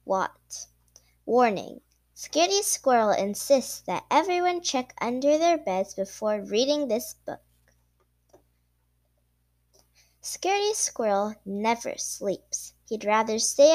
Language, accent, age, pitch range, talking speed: English, American, 10-29, 175-280 Hz, 95 wpm